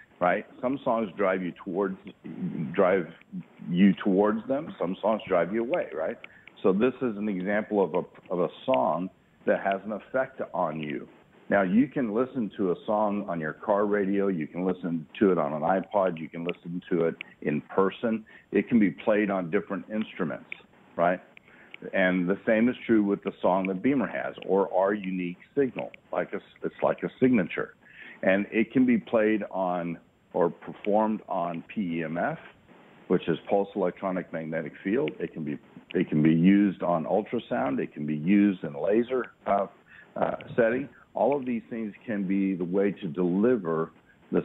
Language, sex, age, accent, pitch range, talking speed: English, male, 60-79, American, 90-110 Hz, 175 wpm